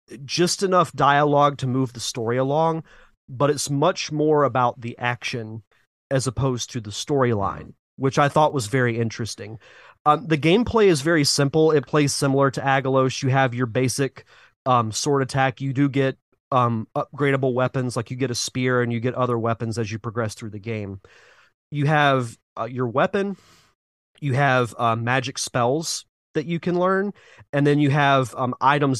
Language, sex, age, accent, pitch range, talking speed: English, male, 30-49, American, 120-150 Hz, 180 wpm